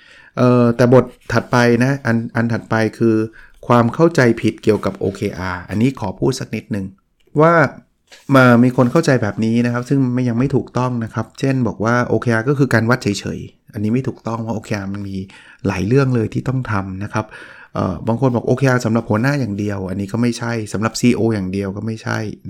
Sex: male